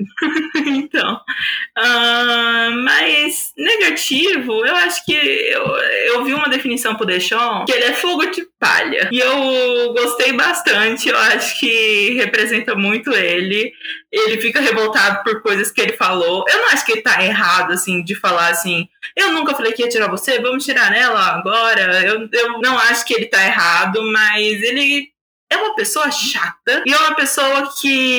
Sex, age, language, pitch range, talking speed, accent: female, 20-39, Portuguese, 210-280 Hz, 165 wpm, Brazilian